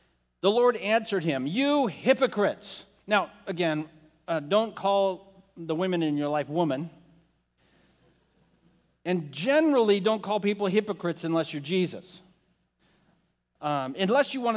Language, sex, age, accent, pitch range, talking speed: English, male, 50-69, American, 170-225 Hz, 125 wpm